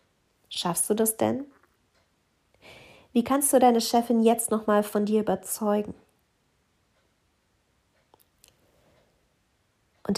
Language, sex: German, female